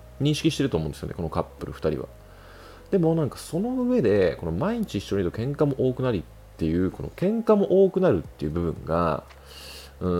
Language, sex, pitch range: Japanese, male, 80-135 Hz